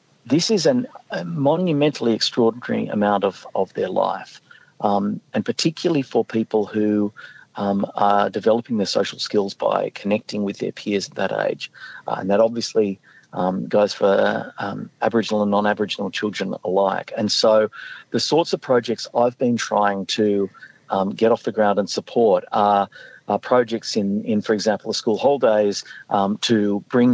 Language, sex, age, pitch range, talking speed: English, male, 50-69, 100-115 Hz, 160 wpm